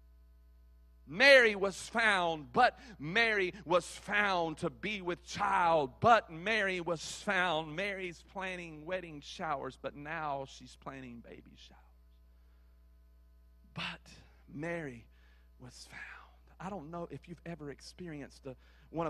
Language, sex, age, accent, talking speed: English, male, 40-59, American, 115 wpm